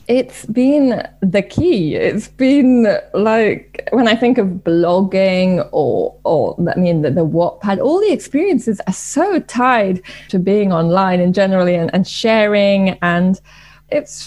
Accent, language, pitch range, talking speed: British, English, 185-255 Hz, 145 wpm